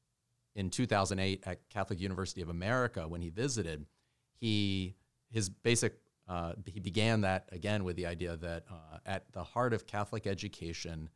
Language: English